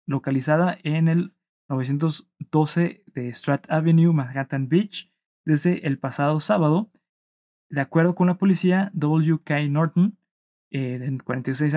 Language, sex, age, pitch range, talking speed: Spanish, male, 20-39, 140-175 Hz, 115 wpm